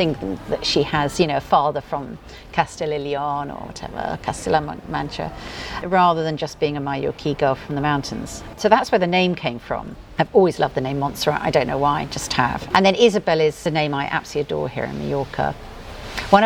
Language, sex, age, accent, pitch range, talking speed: English, female, 50-69, British, 140-165 Hz, 210 wpm